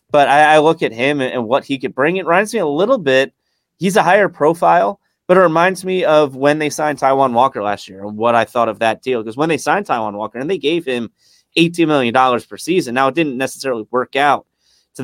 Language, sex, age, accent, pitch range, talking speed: English, male, 30-49, American, 115-150 Hz, 240 wpm